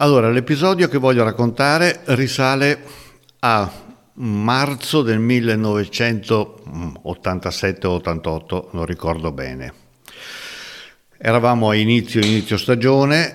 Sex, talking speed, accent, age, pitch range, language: male, 80 wpm, native, 60-79, 90-125 Hz, Italian